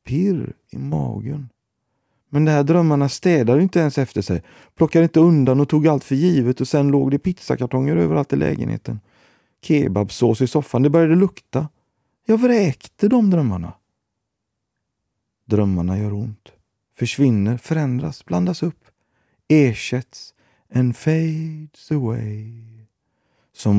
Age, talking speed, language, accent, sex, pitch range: 30-49, 125 wpm, Swedish, native, male, 100-135 Hz